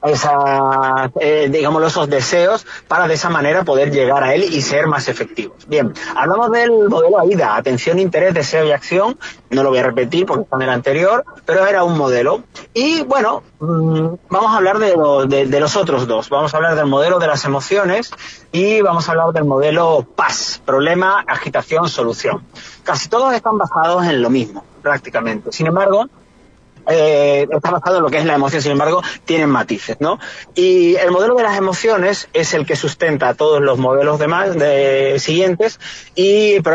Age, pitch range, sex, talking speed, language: 30-49, 140-195 Hz, male, 190 wpm, Spanish